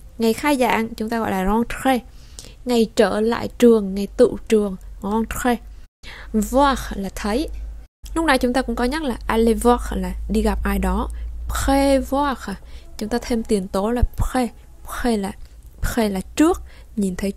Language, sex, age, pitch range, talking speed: Vietnamese, female, 20-39, 200-250 Hz, 175 wpm